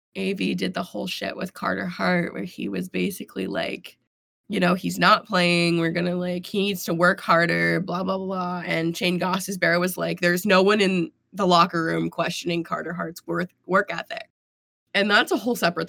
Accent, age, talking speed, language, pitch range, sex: American, 20-39, 205 wpm, English, 170-195 Hz, female